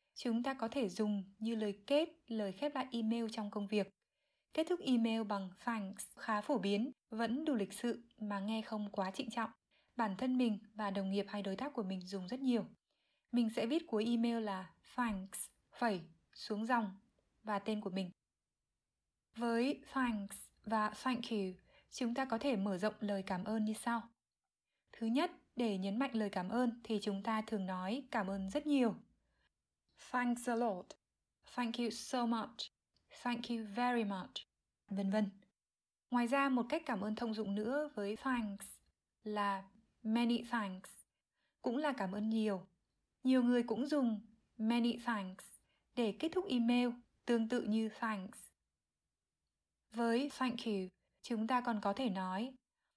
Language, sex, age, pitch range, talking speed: Vietnamese, female, 20-39, 205-245 Hz, 170 wpm